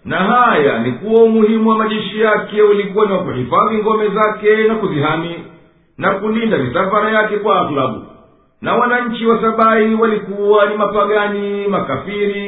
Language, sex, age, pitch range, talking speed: Swahili, male, 50-69, 190-220 Hz, 135 wpm